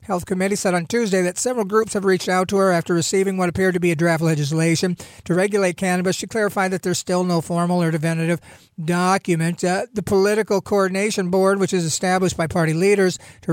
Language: English